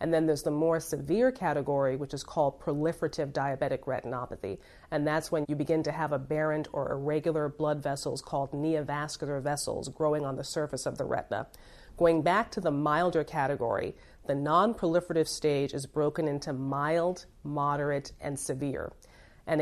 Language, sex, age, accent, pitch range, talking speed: English, female, 40-59, American, 145-165 Hz, 160 wpm